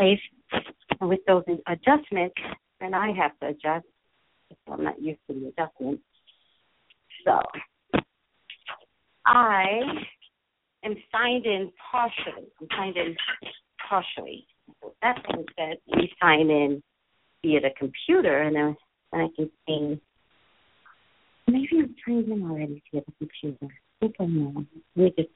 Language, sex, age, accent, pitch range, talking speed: English, female, 50-69, American, 160-230 Hz, 135 wpm